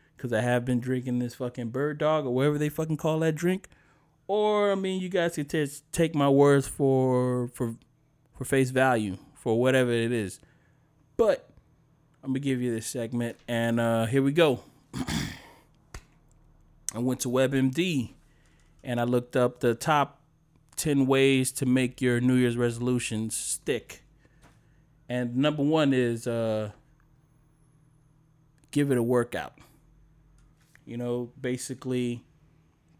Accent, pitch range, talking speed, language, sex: American, 115-140 Hz, 140 wpm, English, male